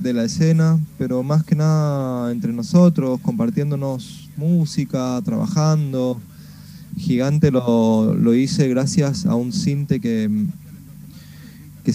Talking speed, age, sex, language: 110 wpm, 20-39, male, Spanish